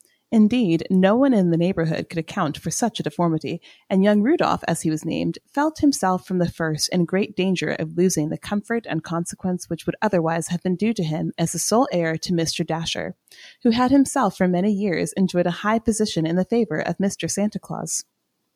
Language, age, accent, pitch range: English, 30-49, American, 165-210 Hz